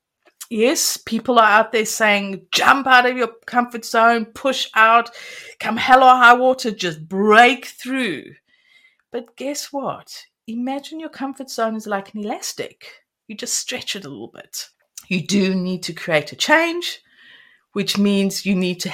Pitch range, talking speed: 210-280 Hz, 165 wpm